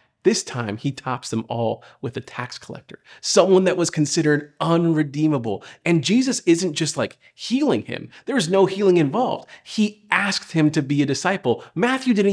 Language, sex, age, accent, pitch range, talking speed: English, male, 40-59, American, 135-190 Hz, 175 wpm